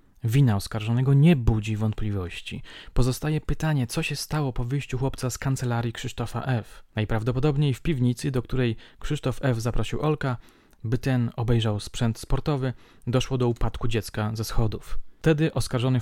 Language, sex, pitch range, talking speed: Polish, male, 110-130 Hz, 145 wpm